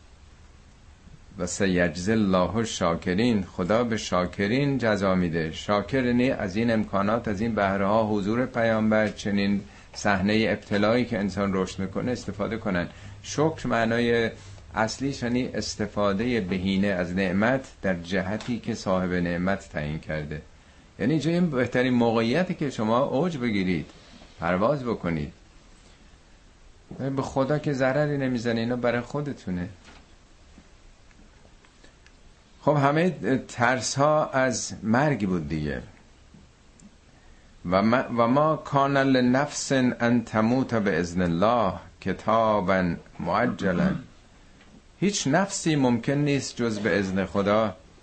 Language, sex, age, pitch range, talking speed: Persian, male, 50-69, 90-130 Hz, 110 wpm